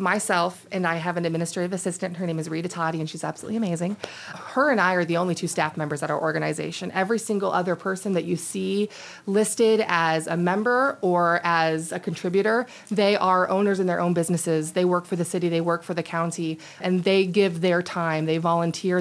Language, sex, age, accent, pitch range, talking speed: English, female, 30-49, American, 165-190 Hz, 210 wpm